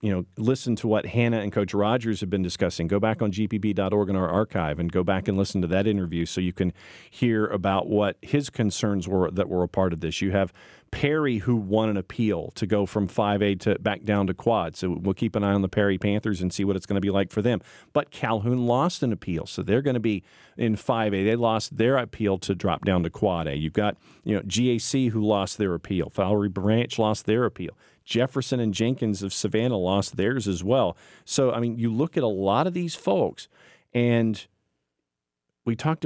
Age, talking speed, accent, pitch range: 40-59, 225 wpm, American, 95-120 Hz